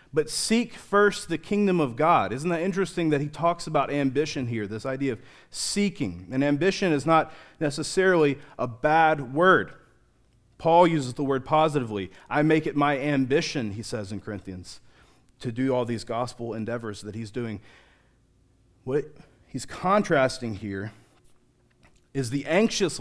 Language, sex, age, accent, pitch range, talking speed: English, male, 40-59, American, 120-170 Hz, 150 wpm